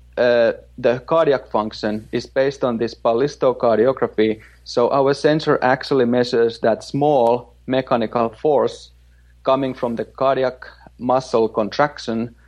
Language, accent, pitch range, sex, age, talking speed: English, Finnish, 105-130 Hz, male, 30-49, 115 wpm